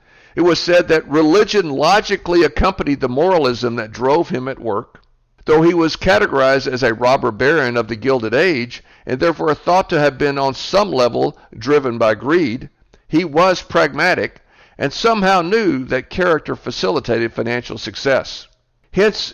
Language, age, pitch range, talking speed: English, 50-69, 120-170 Hz, 155 wpm